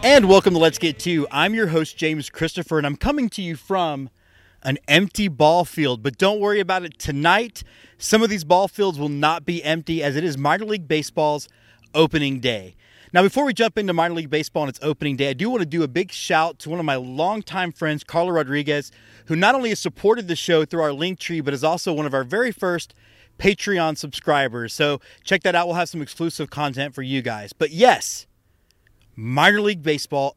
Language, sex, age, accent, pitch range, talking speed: English, male, 30-49, American, 145-190 Hz, 215 wpm